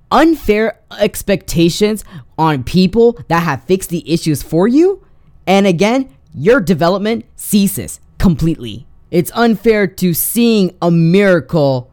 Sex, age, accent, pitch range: female, 20-39, American, 150-210 Hz